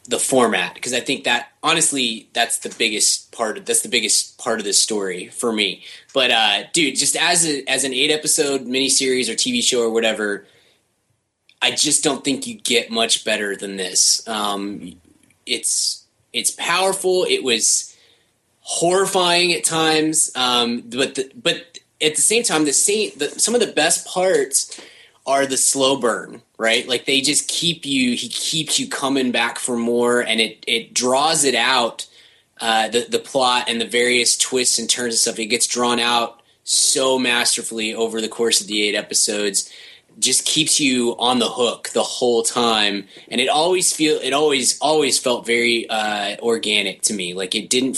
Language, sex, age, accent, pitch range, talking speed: English, male, 20-39, American, 115-145 Hz, 180 wpm